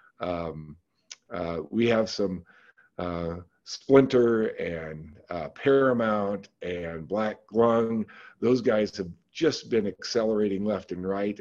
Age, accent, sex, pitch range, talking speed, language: 50-69, American, male, 95-120 Hz, 115 wpm, English